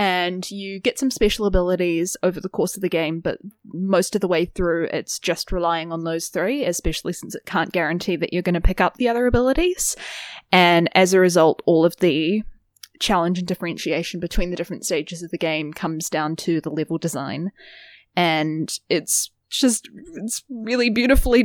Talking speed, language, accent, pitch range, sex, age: 185 wpm, English, Australian, 165-200 Hz, female, 10-29